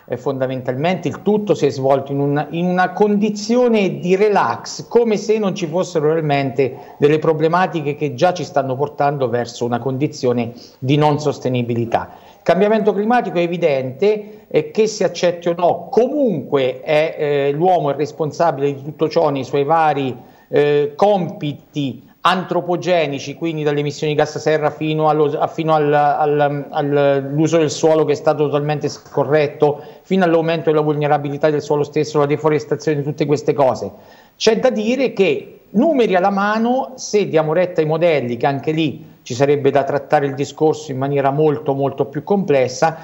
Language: Italian